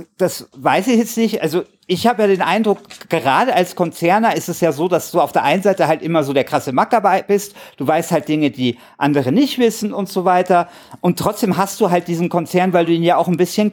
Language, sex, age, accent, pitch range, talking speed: German, male, 50-69, German, 155-200 Hz, 245 wpm